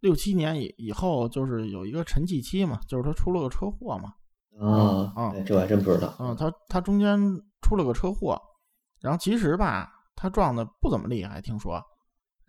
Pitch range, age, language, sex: 115-160 Hz, 20-39, Chinese, male